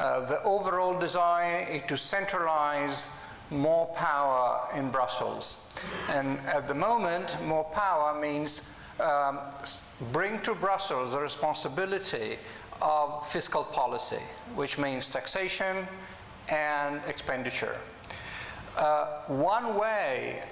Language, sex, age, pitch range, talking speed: English, male, 50-69, 145-190 Hz, 100 wpm